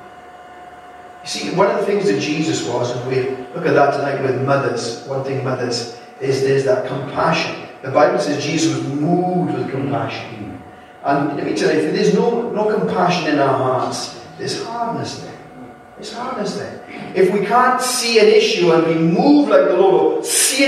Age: 40-59